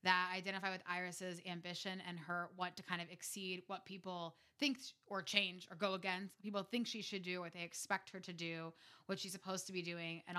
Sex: female